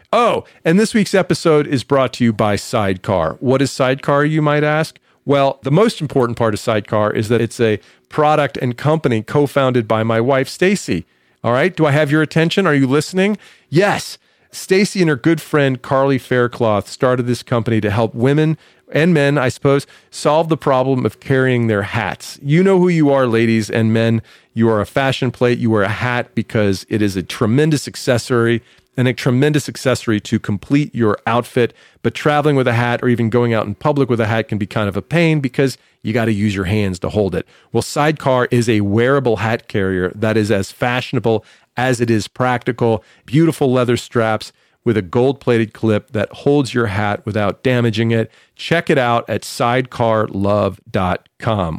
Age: 40-59